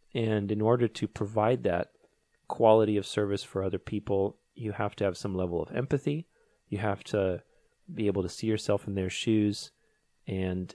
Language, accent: English, American